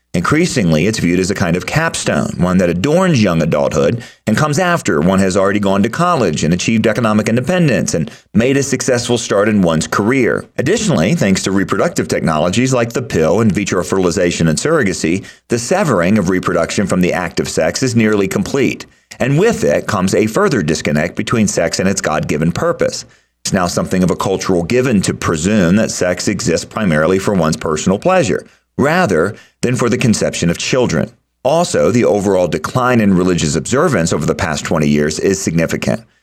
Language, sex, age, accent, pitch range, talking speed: English, male, 40-59, American, 90-125 Hz, 180 wpm